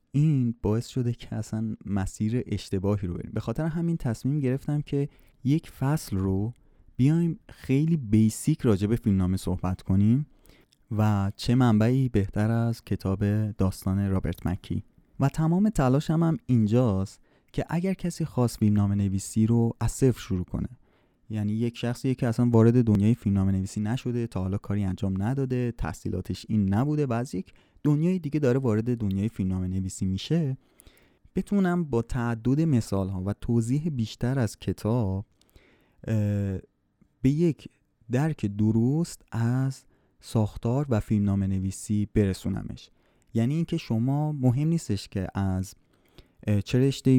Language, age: Persian, 20-39